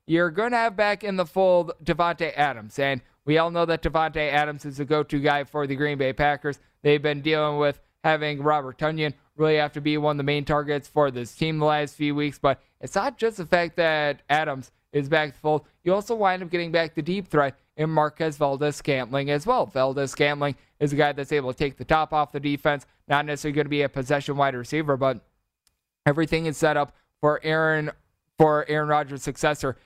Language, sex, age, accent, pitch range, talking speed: English, male, 20-39, American, 145-175 Hz, 220 wpm